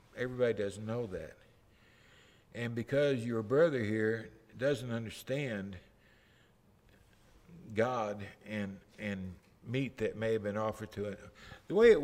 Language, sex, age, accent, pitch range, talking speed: English, male, 60-79, American, 105-135 Hz, 125 wpm